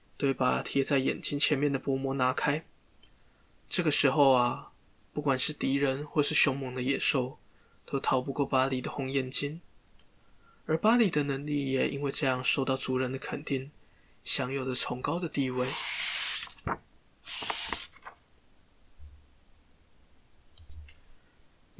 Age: 20-39